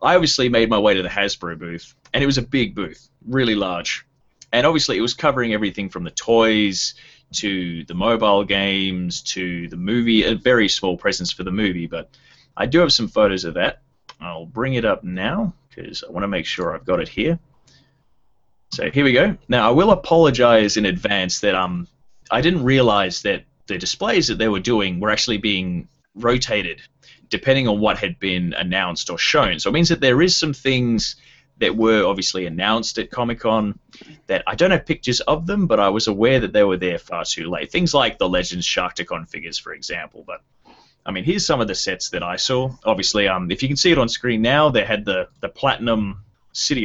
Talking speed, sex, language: 210 wpm, male, English